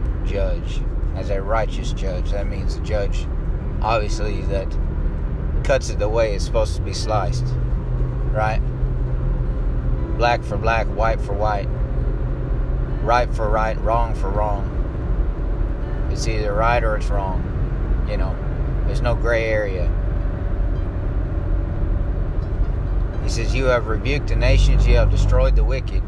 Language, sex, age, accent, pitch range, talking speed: English, male, 30-49, American, 95-120 Hz, 130 wpm